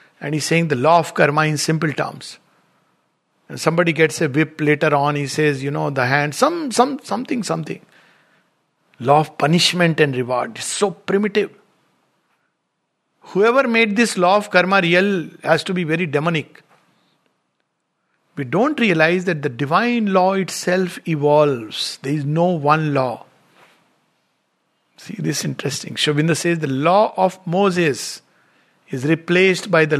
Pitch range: 150-205 Hz